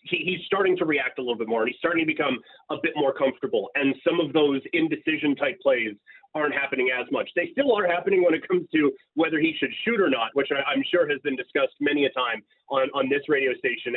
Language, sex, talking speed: English, male, 245 wpm